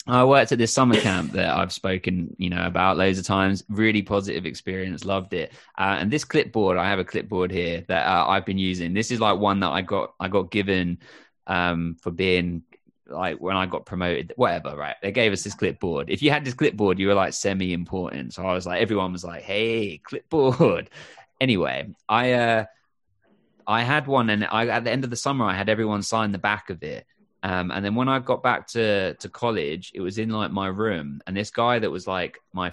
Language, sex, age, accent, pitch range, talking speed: English, male, 20-39, British, 95-110 Hz, 225 wpm